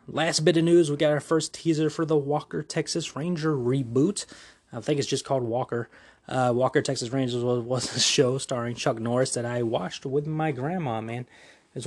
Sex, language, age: male, English, 20-39